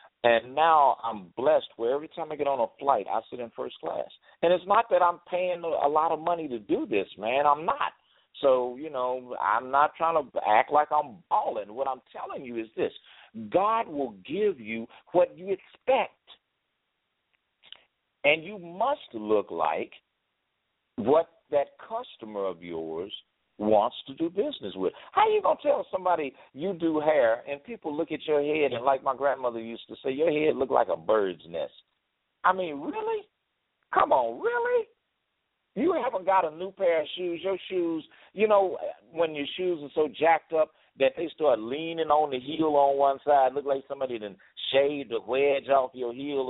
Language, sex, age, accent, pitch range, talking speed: English, male, 50-69, American, 135-180 Hz, 190 wpm